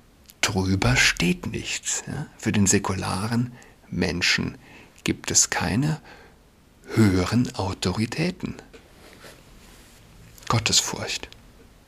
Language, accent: German, German